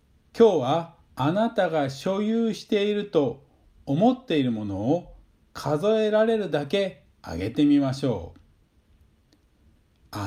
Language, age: Japanese, 50-69